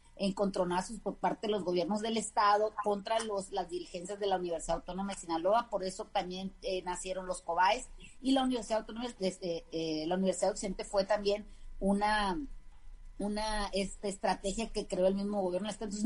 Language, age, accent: Spanish, 30-49, Mexican